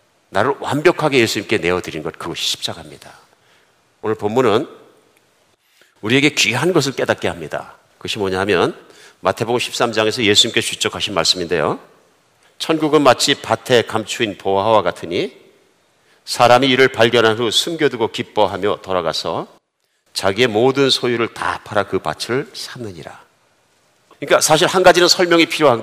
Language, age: Korean, 50-69